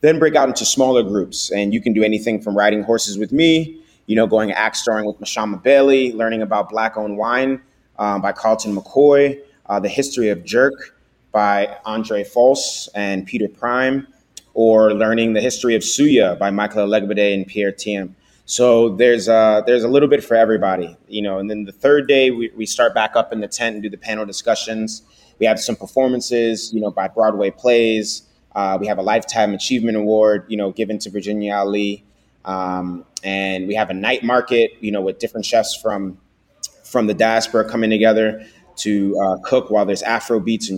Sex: male